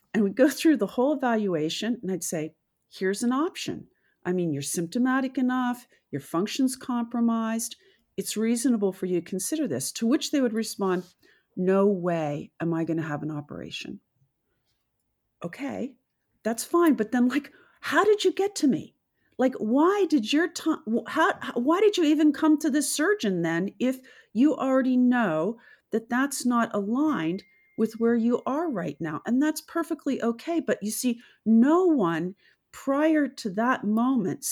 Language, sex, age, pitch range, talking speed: English, female, 50-69, 175-265 Hz, 165 wpm